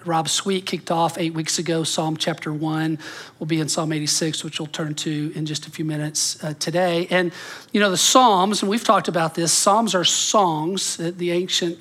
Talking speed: 215 wpm